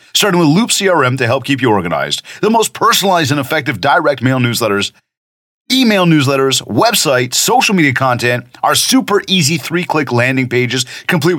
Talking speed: 160 wpm